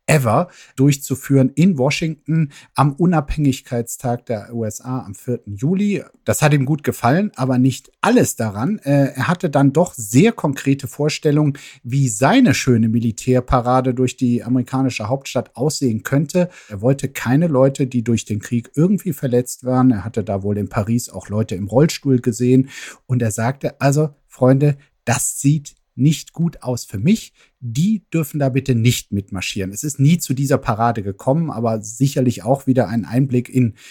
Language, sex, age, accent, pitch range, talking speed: German, male, 50-69, German, 115-140 Hz, 160 wpm